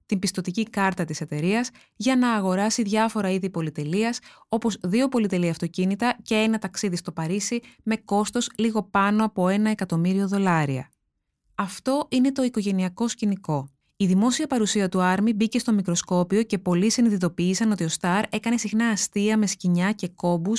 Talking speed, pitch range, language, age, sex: 155 wpm, 180-225 Hz, Greek, 20-39, female